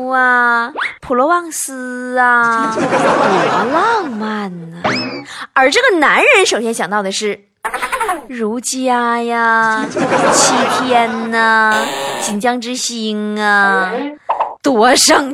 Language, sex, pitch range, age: Chinese, female, 205-295 Hz, 20-39